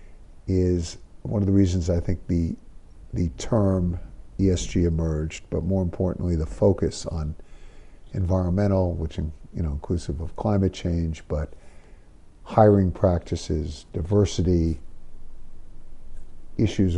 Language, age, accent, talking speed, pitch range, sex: English, 50-69, American, 115 wpm, 80-95 Hz, male